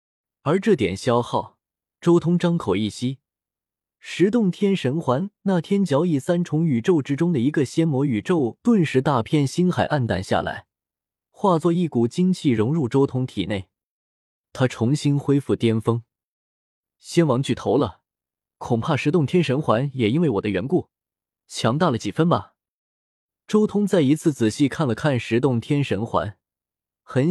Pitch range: 120-170 Hz